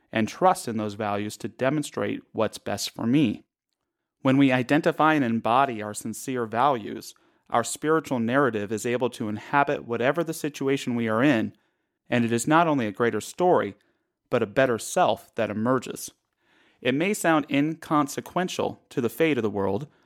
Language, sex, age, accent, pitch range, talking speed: English, male, 30-49, American, 115-155 Hz, 170 wpm